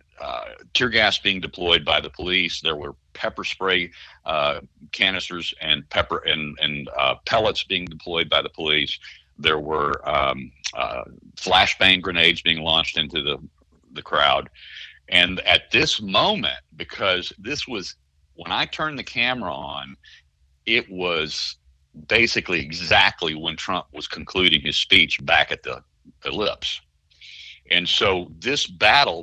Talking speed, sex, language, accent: 140 wpm, male, English, American